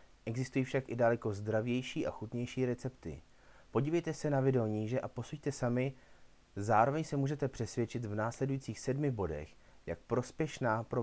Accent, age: native, 30-49